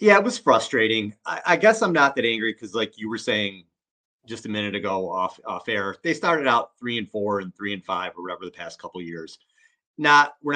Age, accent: 30-49, American